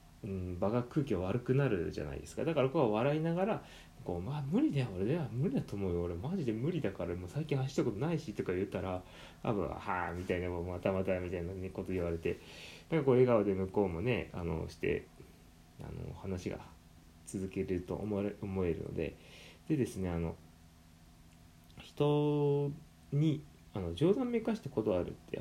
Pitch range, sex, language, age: 85-135 Hz, male, Japanese, 20-39